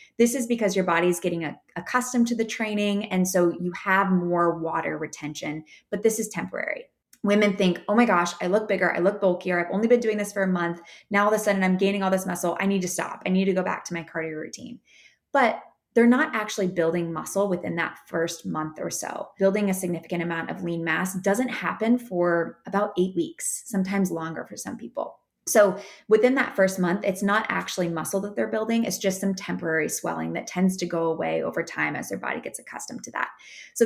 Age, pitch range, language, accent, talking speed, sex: 20-39, 175-215 Hz, English, American, 225 wpm, female